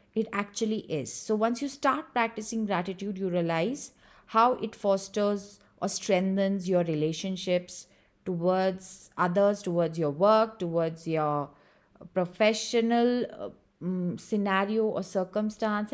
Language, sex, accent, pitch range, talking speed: English, female, Indian, 180-235 Hz, 115 wpm